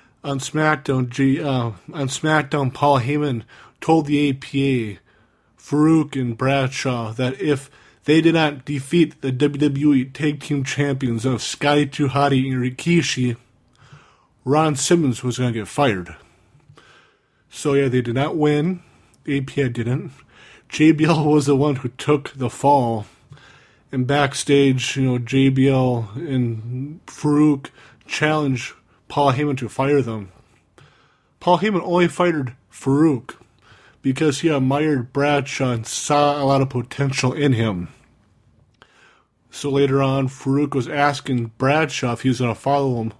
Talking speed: 130 wpm